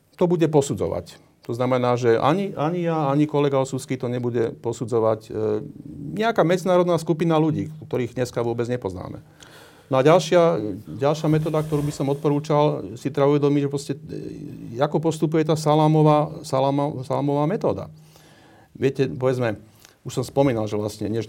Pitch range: 105-150 Hz